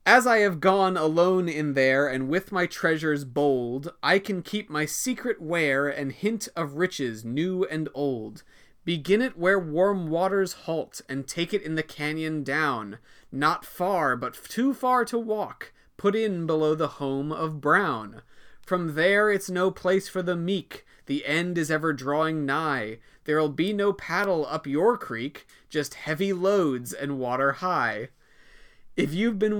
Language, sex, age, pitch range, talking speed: English, male, 30-49, 140-185 Hz, 165 wpm